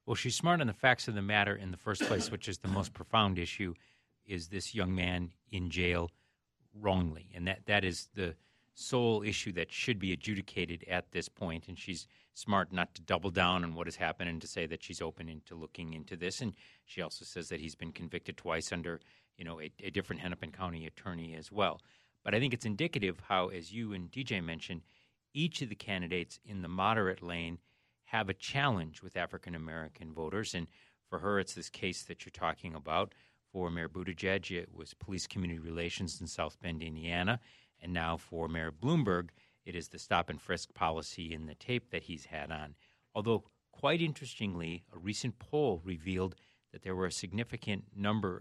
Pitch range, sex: 85-105 Hz, male